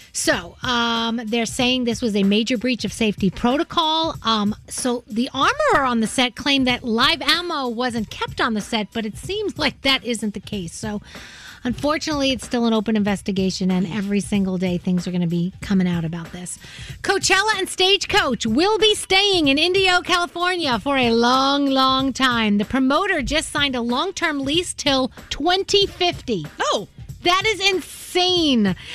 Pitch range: 220-330 Hz